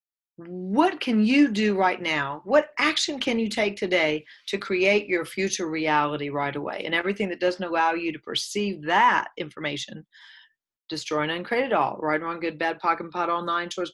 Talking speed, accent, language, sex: 185 wpm, American, English, female